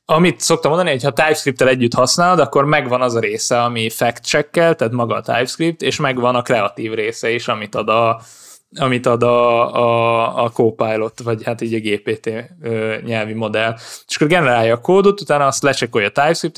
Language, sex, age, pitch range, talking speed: Hungarian, male, 20-39, 115-140 Hz, 190 wpm